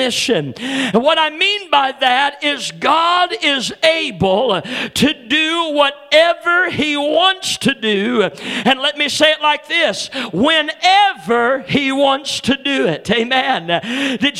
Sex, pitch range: male, 245-300 Hz